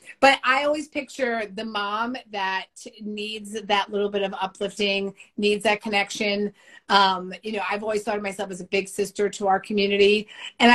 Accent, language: American, English